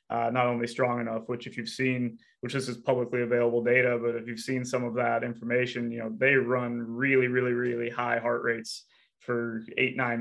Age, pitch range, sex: 20-39, 120-130 Hz, male